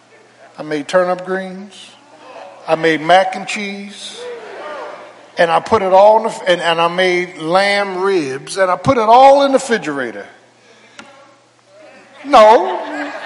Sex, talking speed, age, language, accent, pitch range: male, 140 wpm, 50-69, English, American, 195-325 Hz